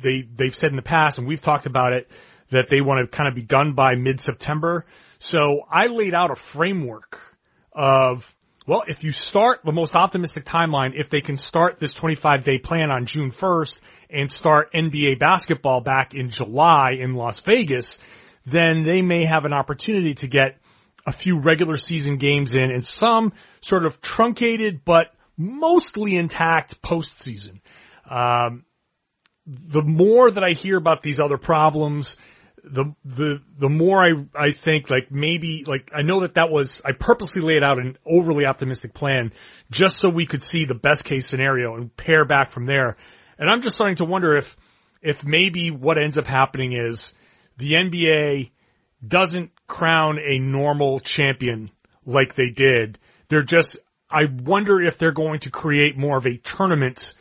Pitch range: 135-165 Hz